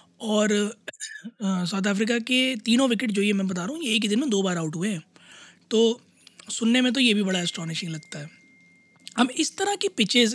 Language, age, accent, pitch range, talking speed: Hindi, 20-39, native, 195-240 Hz, 210 wpm